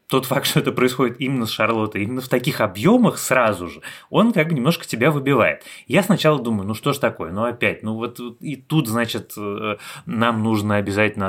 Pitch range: 105-140 Hz